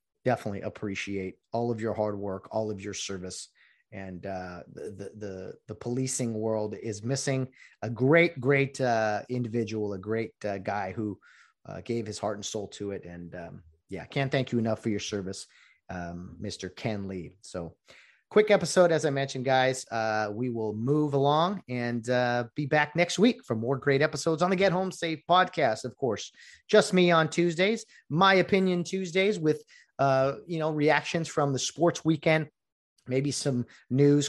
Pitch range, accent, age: 110-145 Hz, American, 30-49